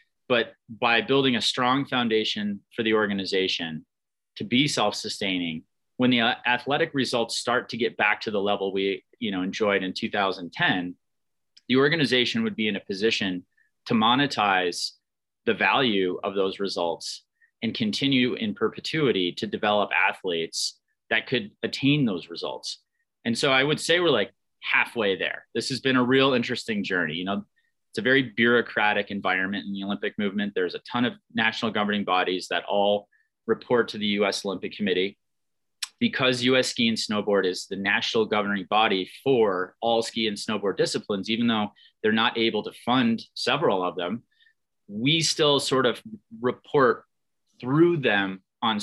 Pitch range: 100-140 Hz